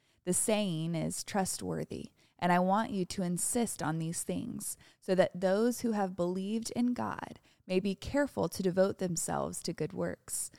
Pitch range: 165-210 Hz